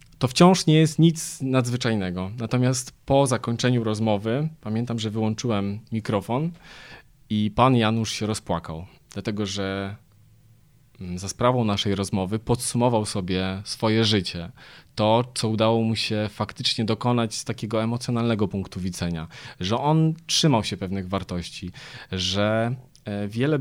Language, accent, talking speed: Polish, native, 125 wpm